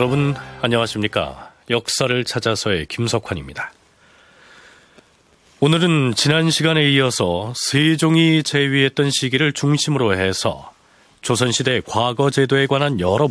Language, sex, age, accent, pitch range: Korean, male, 40-59, native, 120-165 Hz